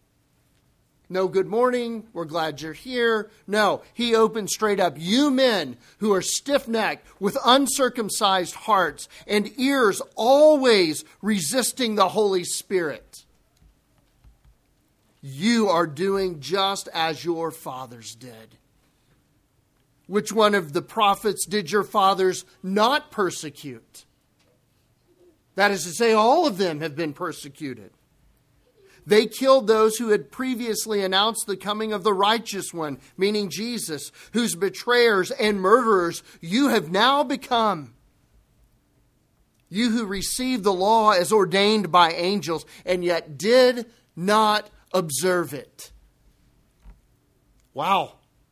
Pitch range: 170-225 Hz